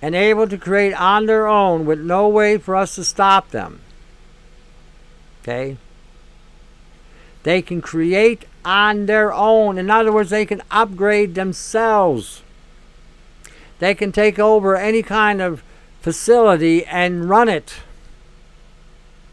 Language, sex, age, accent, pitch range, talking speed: English, male, 60-79, American, 165-210 Hz, 125 wpm